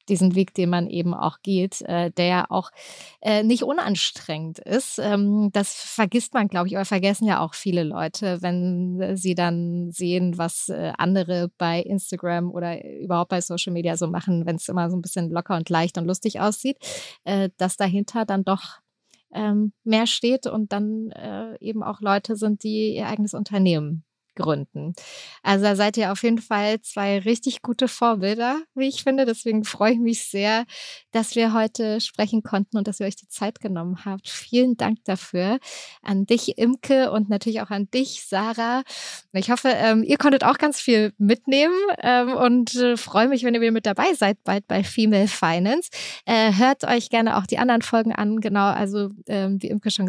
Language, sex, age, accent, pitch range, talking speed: German, female, 20-39, German, 185-230 Hz, 180 wpm